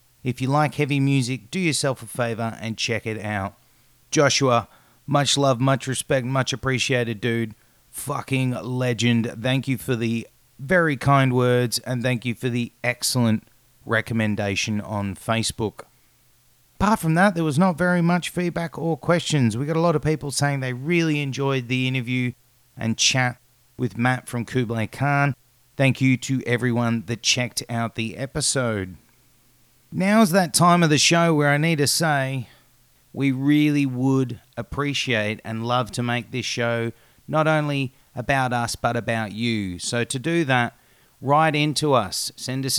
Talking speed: 160 wpm